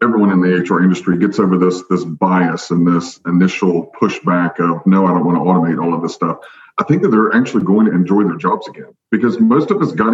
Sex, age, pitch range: male, 40-59, 90-115 Hz